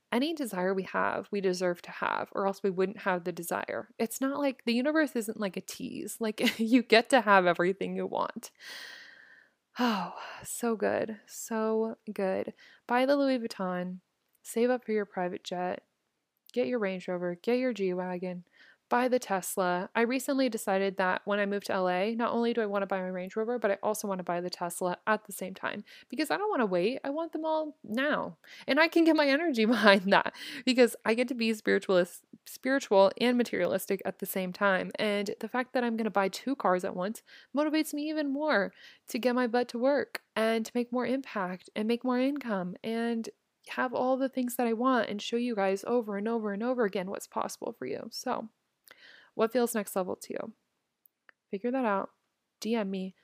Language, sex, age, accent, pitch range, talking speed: English, female, 20-39, American, 195-250 Hz, 210 wpm